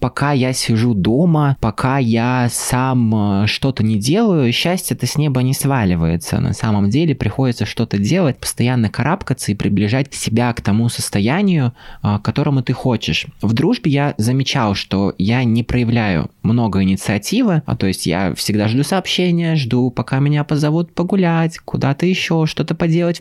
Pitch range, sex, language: 105-135 Hz, male, Russian